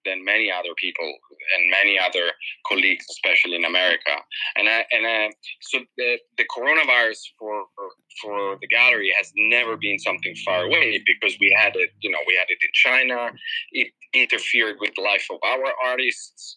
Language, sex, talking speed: English, male, 175 wpm